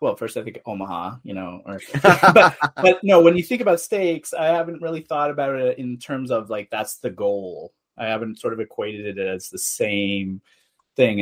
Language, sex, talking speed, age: English, male, 210 wpm, 30-49